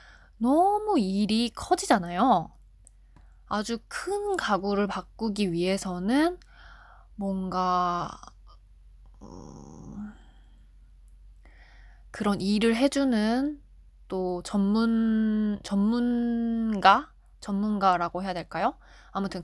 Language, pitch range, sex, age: Korean, 180-225 Hz, female, 20-39